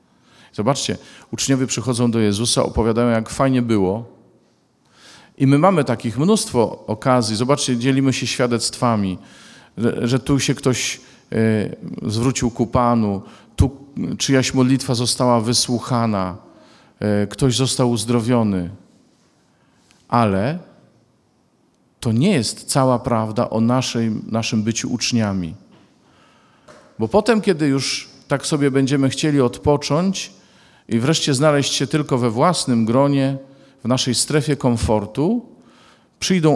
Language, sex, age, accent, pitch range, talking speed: Polish, male, 40-59, native, 115-145 Hz, 110 wpm